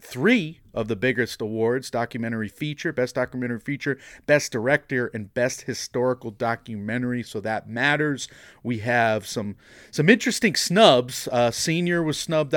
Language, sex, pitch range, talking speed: English, male, 110-135 Hz, 140 wpm